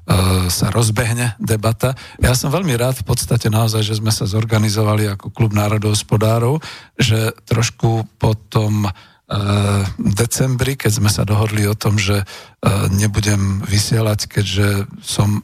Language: Slovak